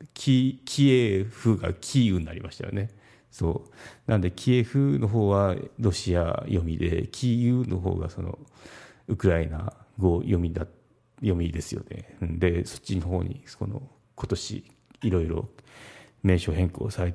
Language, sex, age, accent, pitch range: Japanese, male, 40-59, native, 90-120 Hz